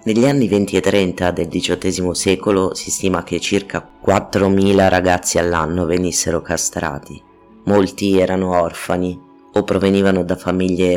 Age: 30-49